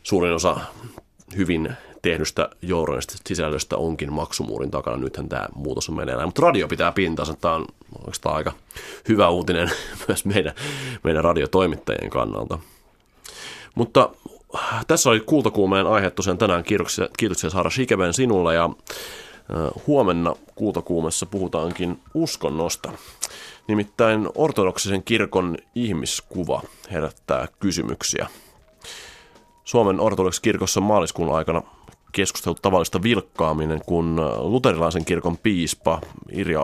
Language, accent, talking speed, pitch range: Finnish, native, 100 wpm, 80-105 Hz